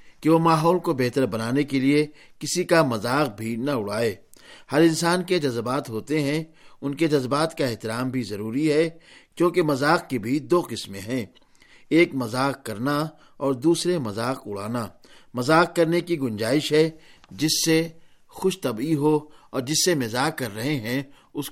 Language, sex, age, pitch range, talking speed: Urdu, male, 50-69, 125-160 Hz, 165 wpm